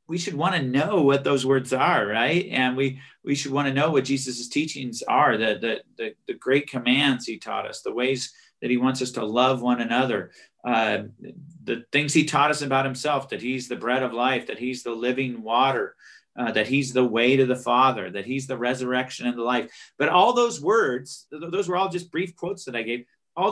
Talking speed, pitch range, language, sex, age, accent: 220 wpm, 125-155 Hz, English, male, 40-59, American